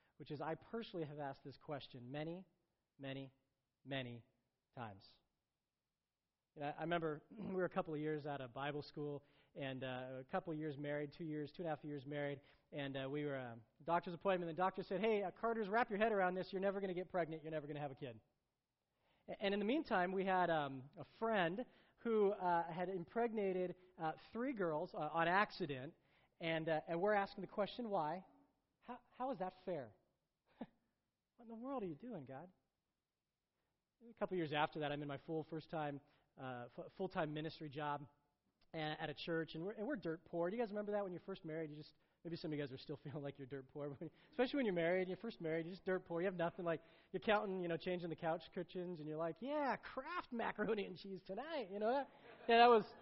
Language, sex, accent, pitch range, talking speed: English, male, American, 150-195 Hz, 235 wpm